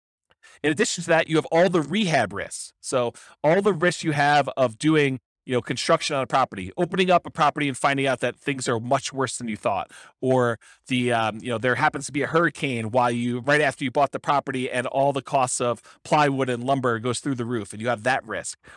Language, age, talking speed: English, 40-59, 240 wpm